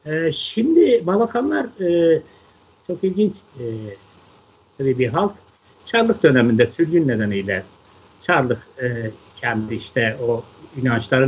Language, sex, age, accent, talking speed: Turkish, male, 60-79, native, 105 wpm